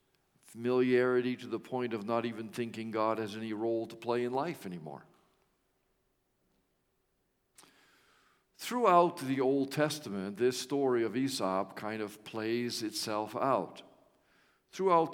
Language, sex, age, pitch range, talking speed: English, male, 50-69, 115-155 Hz, 125 wpm